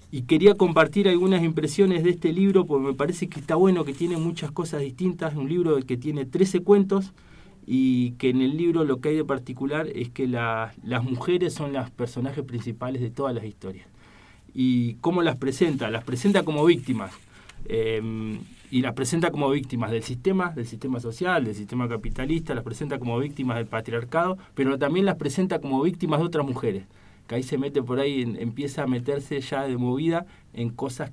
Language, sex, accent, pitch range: Spanish, male, Argentinian, 120-160 Hz